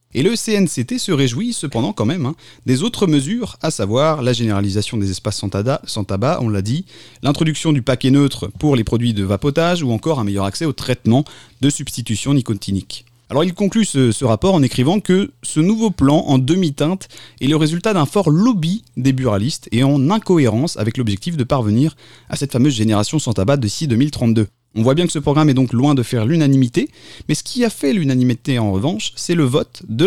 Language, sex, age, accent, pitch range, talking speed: French, male, 30-49, French, 120-165 Hz, 210 wpm